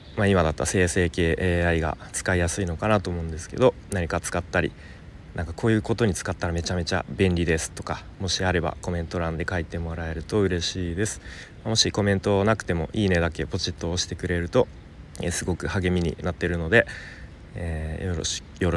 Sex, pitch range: male, 85-105 Hz